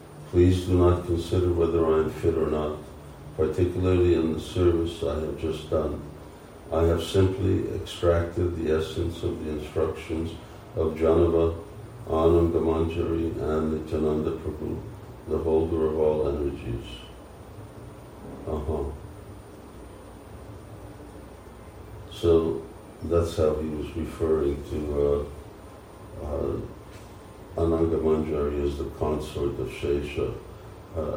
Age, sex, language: 50-69, male, English